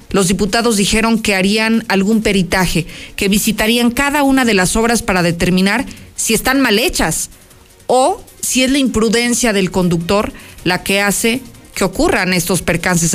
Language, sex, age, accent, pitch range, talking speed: Spanish, female, 40-59, Mexican, 185-240 Hz, 155 wpm